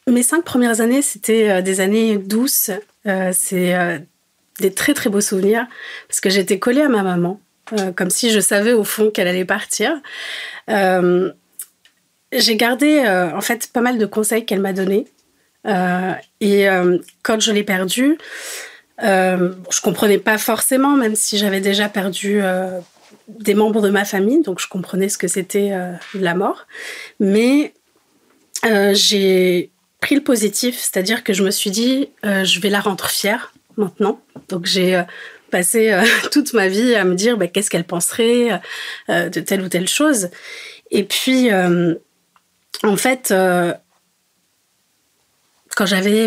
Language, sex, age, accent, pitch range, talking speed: French, female, 30-49, French, 190-235 Hz, 170 wpm